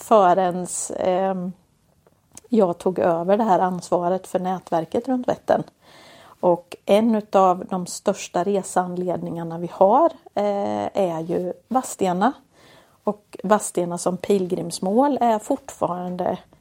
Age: 40-59